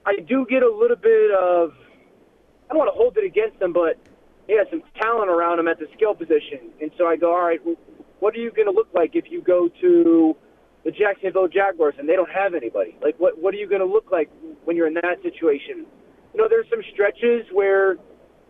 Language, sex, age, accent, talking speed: English, male, 30-49, American, 240 wpm